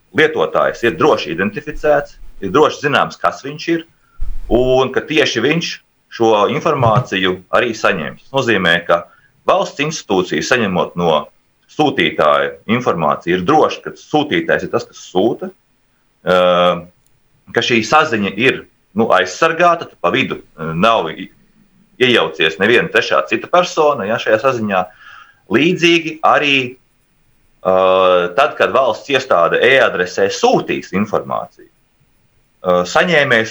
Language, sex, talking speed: Russian, male, 105 wpm